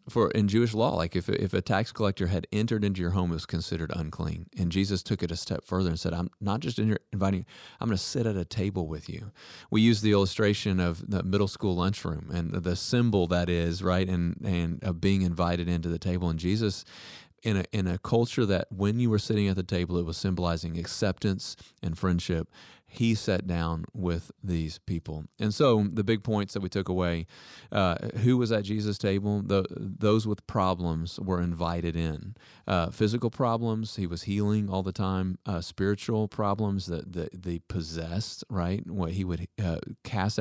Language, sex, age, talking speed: English, male, 30-49, 205 wpm